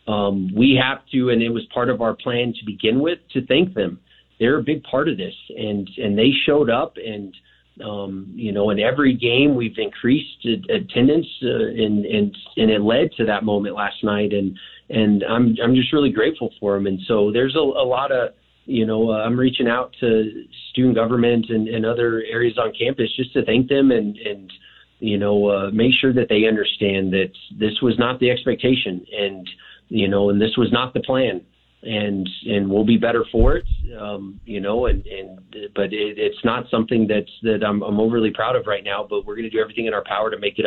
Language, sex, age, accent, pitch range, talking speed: English, male, 30-49, American, 105-125 Hz, 215 wpm